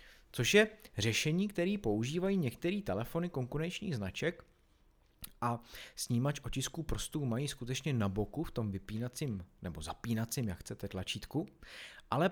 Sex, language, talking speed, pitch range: male, Czech, 125 wpm, 110-155 Hz